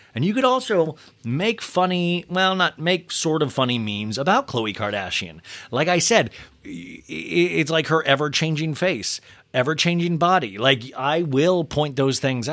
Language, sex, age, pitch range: English, male, 30-49, 125-200 Hz